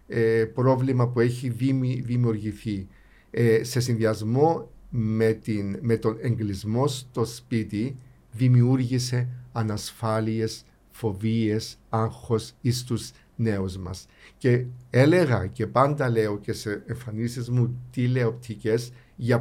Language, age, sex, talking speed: Greek, 50-69, male, 95 wpm